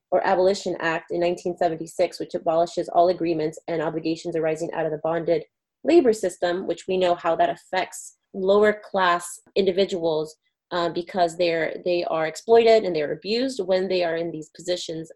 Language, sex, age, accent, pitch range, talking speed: English, female, 30-49, American, 170-205 Hz, 175 wpm